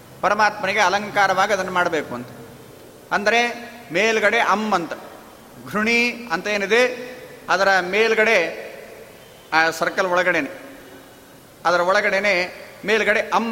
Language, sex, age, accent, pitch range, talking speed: Kannada, male, 40-59, native, 195-230 Hz, 95 wpm